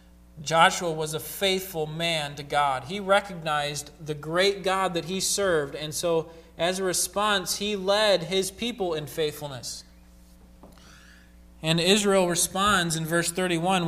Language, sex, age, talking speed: English, male, 20-39, 140 wpm